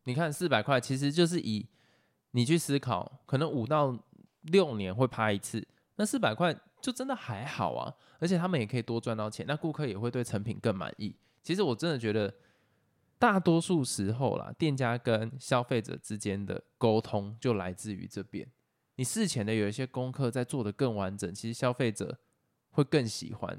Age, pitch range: 20-39, 110-155 Hz